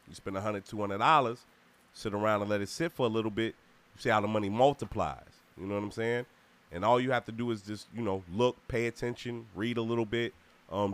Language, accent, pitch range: English, American, 95-115 Hz